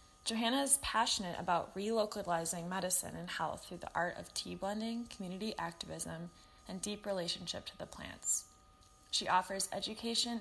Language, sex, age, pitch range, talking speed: English, female, 20-39, 170-215 Hz, 145 wpm